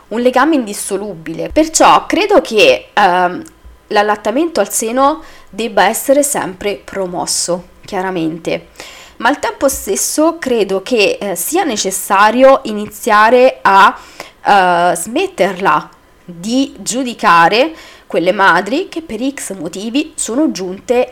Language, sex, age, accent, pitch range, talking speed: Italian, female, 20-39, native, 190-270 Hz, 110 wpm